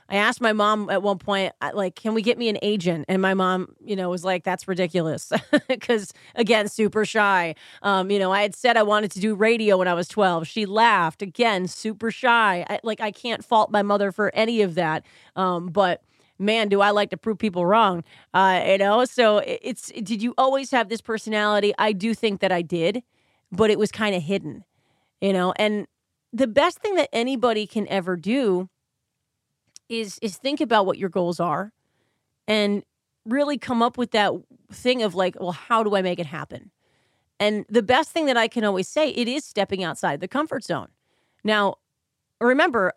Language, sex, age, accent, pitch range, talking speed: English, female, 30-49, American, 185-225 Hz, 200 wpm